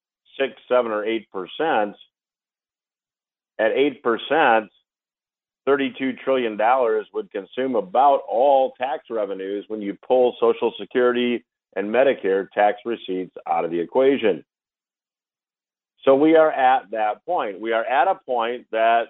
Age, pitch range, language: 50-69, 115-150 Hz, English